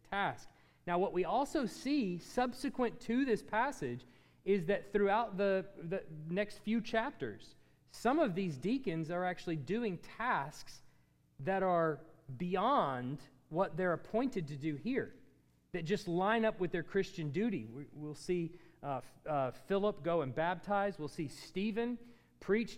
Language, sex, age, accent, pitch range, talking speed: English, male, 40-59, American, 150-200 Hz, 150 wpm